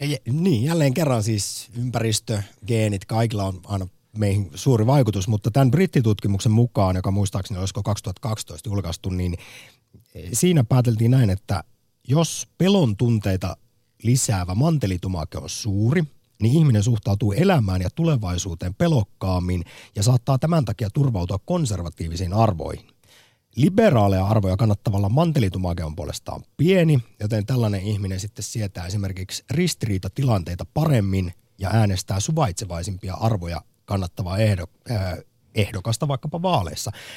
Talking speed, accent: 115 wpm, native